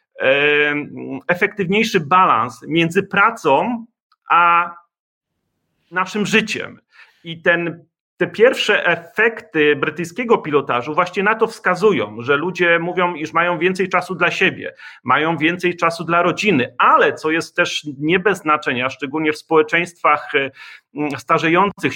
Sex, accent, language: male, native, Polish